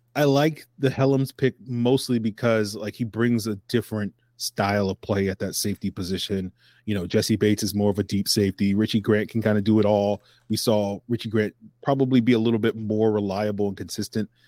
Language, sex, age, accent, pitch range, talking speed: English, male, 30-49, American, 100-115 Hz, 205 wpm